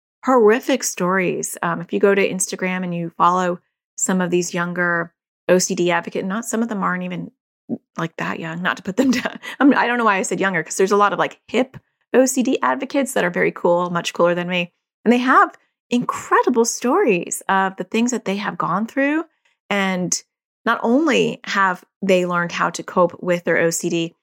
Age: 30-49